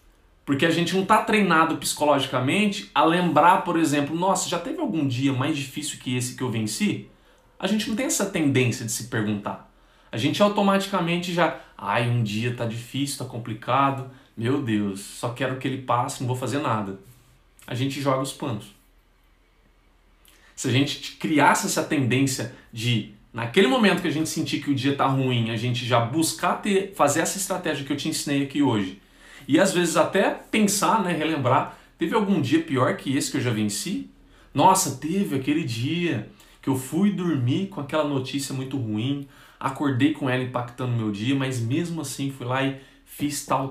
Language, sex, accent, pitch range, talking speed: Portuguese, male, Brazilian, 125-170 Hz, 185 wpm